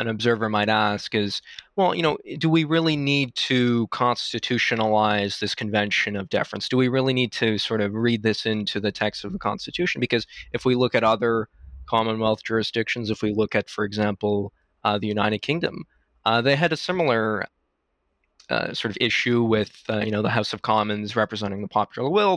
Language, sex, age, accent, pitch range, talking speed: English, male, 20-39, American, 105-125 Hz, 195 wpm